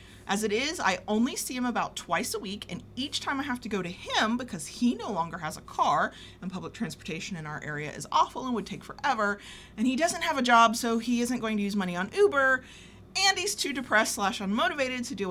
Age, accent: 30-49, American